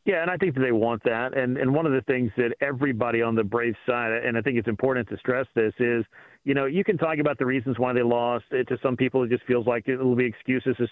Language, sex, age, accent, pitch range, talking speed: English, male, 40-59, American, 120-140 Hz, 285 wpm